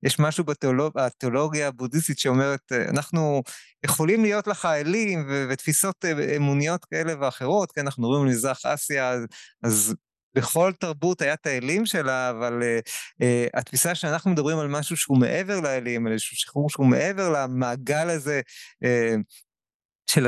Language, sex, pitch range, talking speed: Hebrew, male, 130-170 Hz, 145 wpm